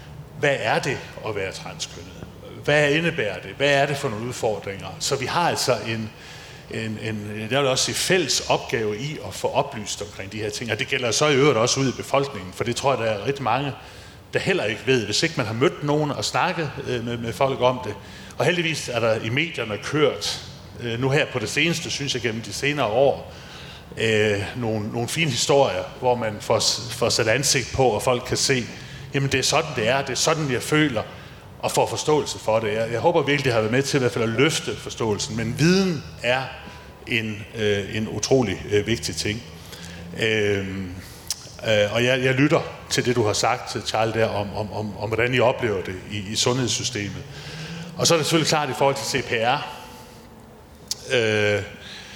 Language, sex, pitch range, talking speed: Danish, male, 105-140 Hz, 200 wpm